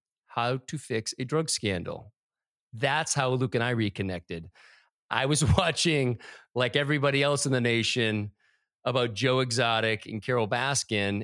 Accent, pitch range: American, 115-150 Hz